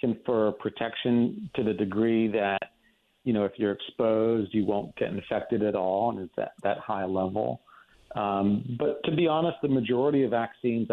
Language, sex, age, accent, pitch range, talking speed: English, male, 50-69, American, 95-120 Hz, 175 wpm